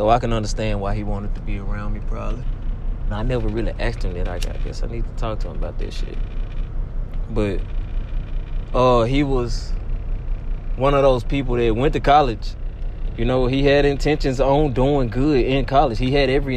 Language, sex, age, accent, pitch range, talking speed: English, male, 20-39, American, 105-125 Hz, 205 wpm